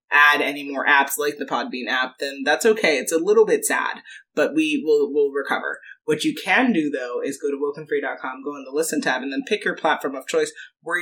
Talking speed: 235 wpm